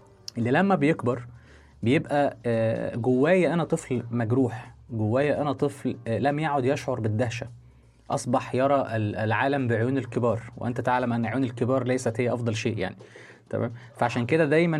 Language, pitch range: Arabic, 110-135 Hz